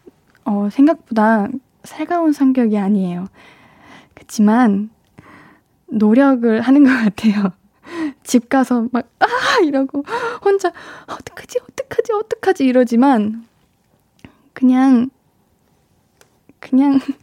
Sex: female